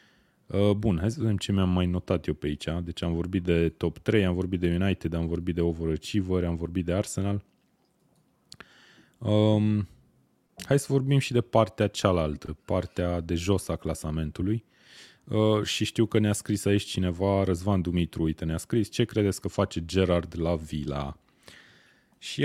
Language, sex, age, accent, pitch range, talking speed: Romanian, male, 20-39, native, 80-105 Hz, 165 wpm